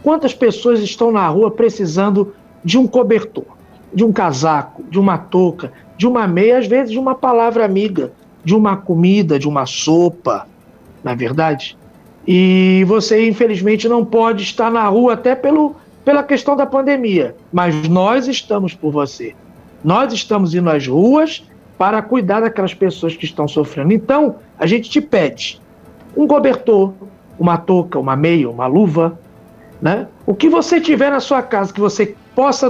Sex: male